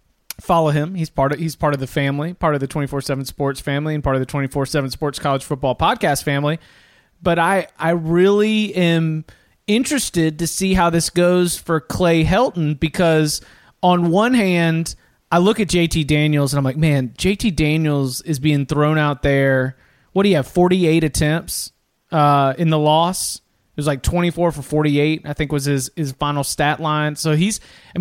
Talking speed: 195 wpm